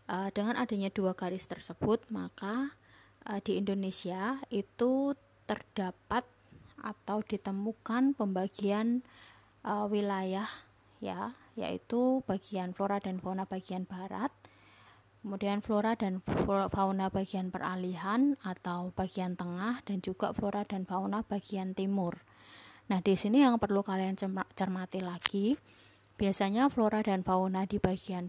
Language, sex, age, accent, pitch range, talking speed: Indonesian, female, 20-39, native, 185-215 Hz, 110 wpm